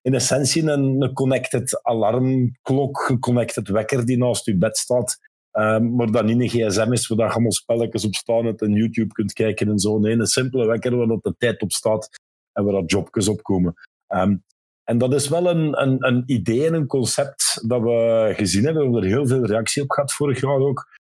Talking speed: 210 wpm